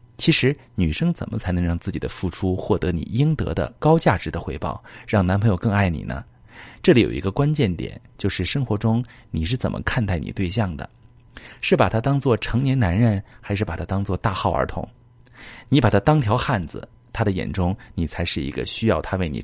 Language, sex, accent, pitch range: Chinese, male, native, 90-120 Hz